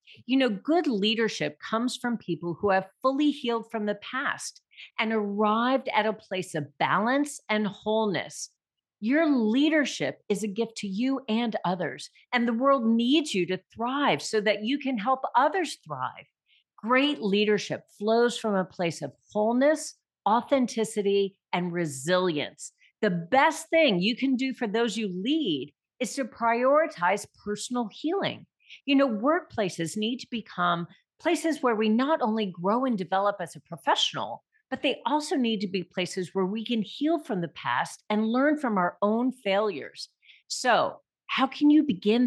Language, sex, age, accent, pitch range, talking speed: English, female, 40-59, American, 205-270 Hz, 160 wpm